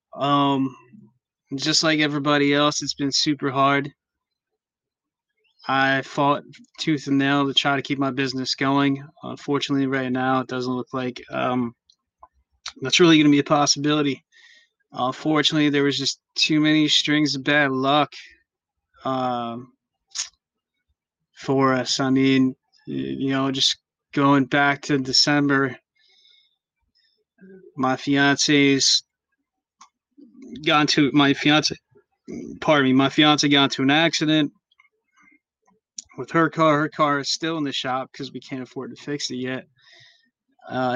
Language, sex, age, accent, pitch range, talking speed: English, male, 20-39, American, 130-155 Hz, 135 wpm